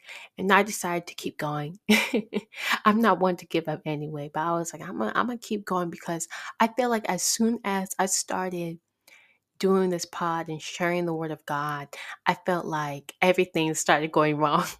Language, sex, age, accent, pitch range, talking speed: English, female, 20-39, American, 155-185 Hz, 195 wpm